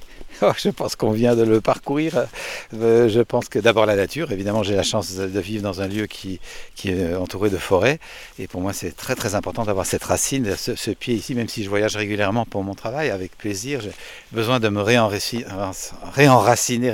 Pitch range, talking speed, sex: 100-125 Hz, 200 wpm, male